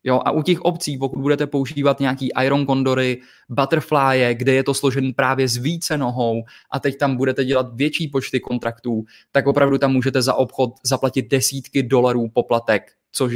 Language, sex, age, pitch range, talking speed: Czech, male, 20-39, 115-140 Hz, 175 wpm